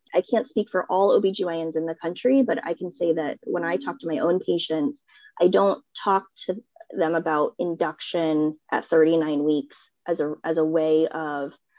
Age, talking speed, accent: 20-39, 190 wpm, American